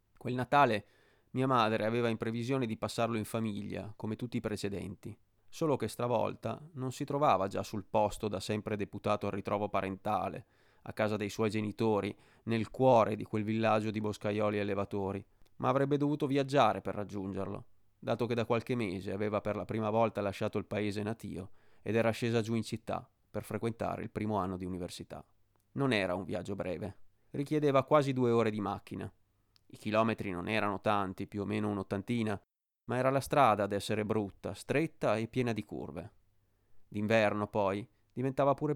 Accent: native